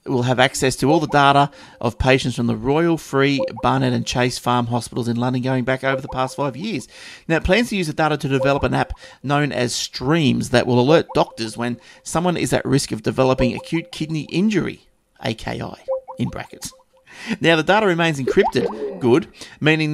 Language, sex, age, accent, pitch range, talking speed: English, male, 30-49, Australian, 125-165 Hz, 195 wpm